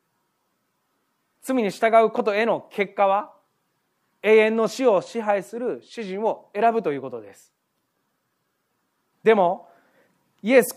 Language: Japanese